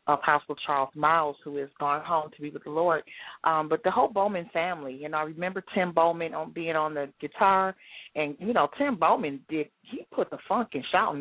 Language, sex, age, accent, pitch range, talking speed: English, female, 40-59, American, 165-225 Hz, 225 wpm